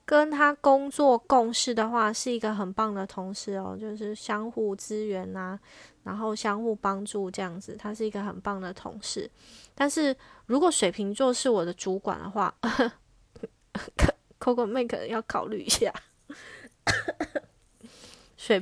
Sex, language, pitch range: female, Chinese, 195-240 Hz